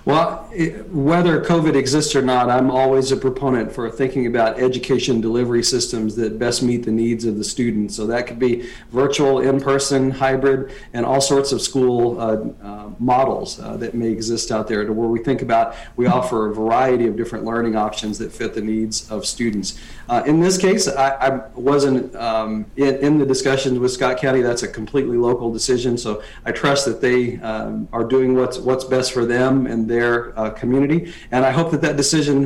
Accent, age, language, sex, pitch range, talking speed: American, 50-69, English, male, 115-135 Hz, 200 wpm